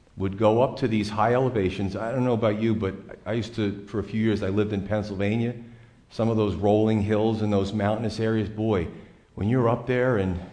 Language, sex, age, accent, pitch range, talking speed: English, male, 40-59, American, 100-125 Hz, 220 wpm